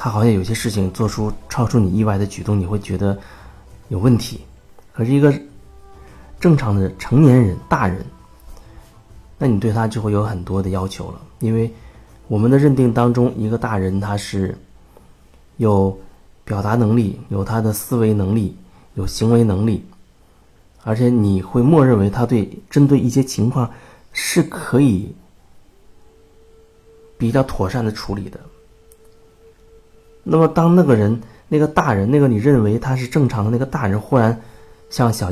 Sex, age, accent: male, 30-49, native